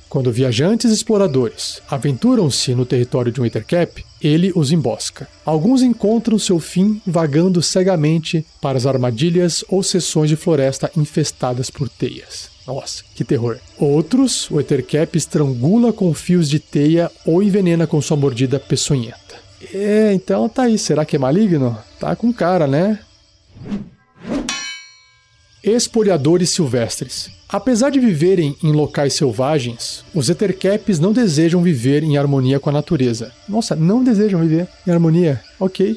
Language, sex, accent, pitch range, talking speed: Portuguese, male, Brazilian, 135-195 Hz, 140 wpm